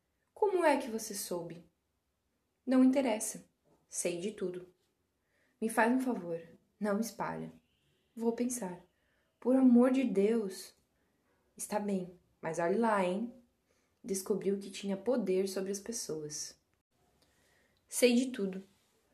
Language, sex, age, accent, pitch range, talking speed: Portuguese, female, 20-39, Brazilian, 170-245 Hz, 120 wpm